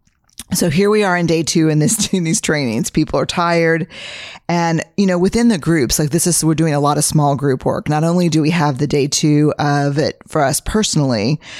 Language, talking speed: English, 230 wpm